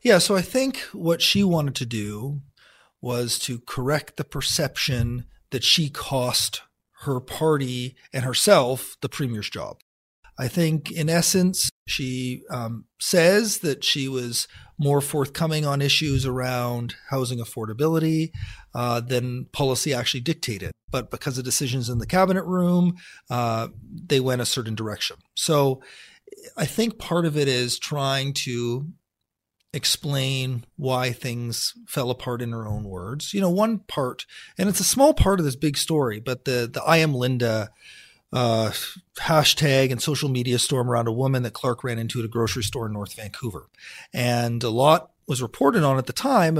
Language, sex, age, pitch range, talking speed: English, male, 40-59, 120-155 Hz, 160 wpm